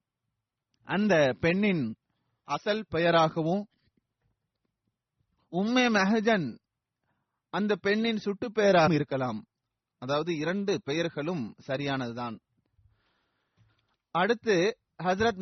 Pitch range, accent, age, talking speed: 140-200 Hz, native, 30-49, 45 wpm